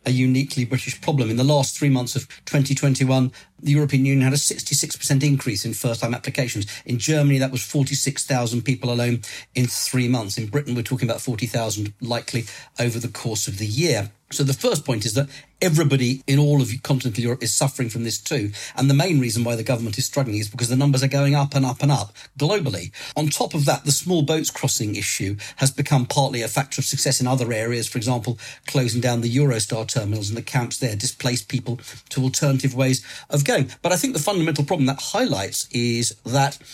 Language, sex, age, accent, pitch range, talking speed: English, male, 40-59, British, 120-145 Hz, 210 wpm